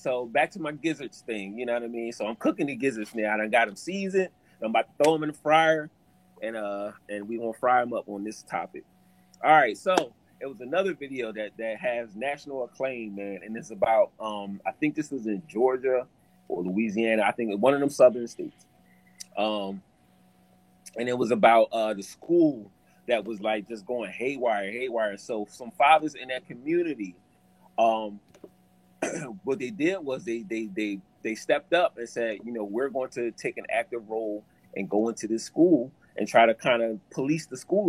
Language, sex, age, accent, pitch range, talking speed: English, male, 30-49, American, 105-135 Hz, 205 wpm